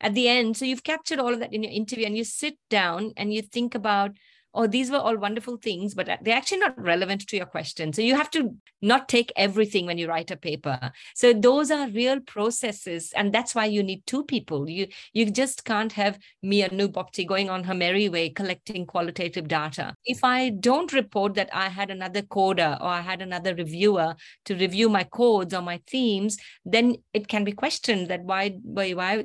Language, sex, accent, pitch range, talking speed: English, female, Indian, 185-235 Hz, 215 wpm